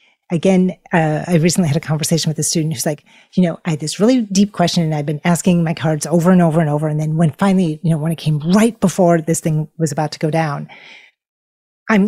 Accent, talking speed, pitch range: American, 250 wpm, 155-200 Hz